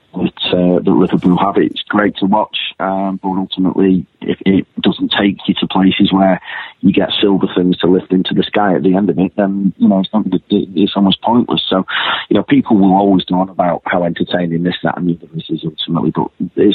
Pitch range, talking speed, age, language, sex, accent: 90-100 Hz, 210 wpm, 30-49, English, male, British